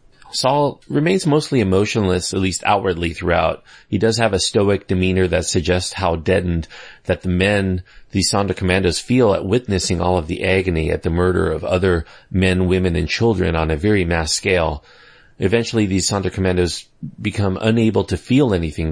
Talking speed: 170 wpm